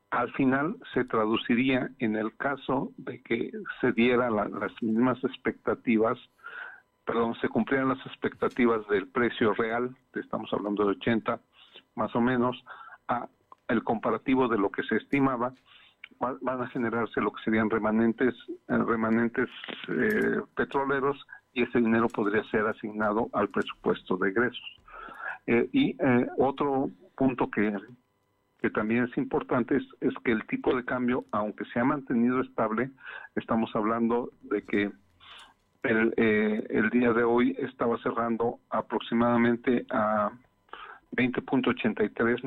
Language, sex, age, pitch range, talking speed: Spanish, male, 50-69, 110-130 Hz, 135 wpm